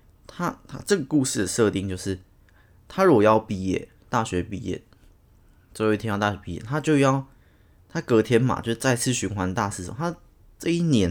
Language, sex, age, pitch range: Chinese, male, 20-39, 95-120 Hz